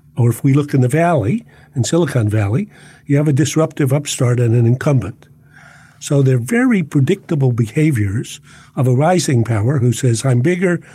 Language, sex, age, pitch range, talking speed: English, male, 50-69, 130-155 Hz, 170 wpm